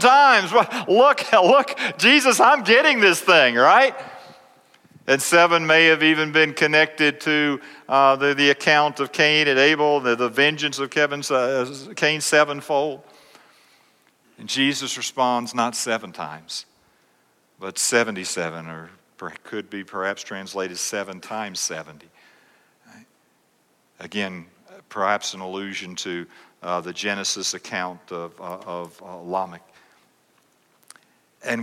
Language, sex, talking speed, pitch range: English, male, 120 wpm, 100-155 Hz